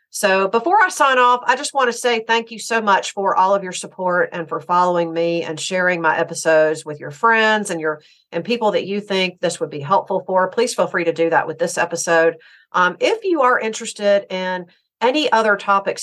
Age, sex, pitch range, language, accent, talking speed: 40-59, female, 165-200 Hz, English, American, 225 wpm